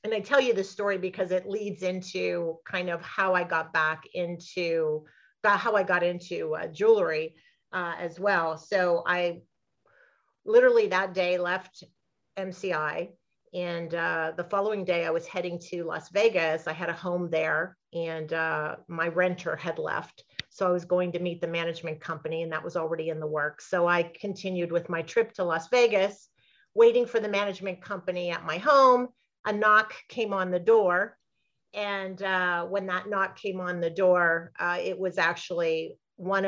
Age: 40-59